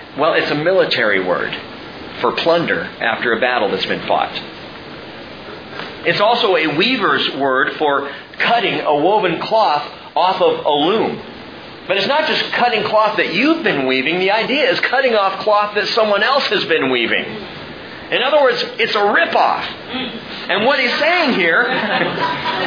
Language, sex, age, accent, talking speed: English, male, 40-59, American, 160 wpm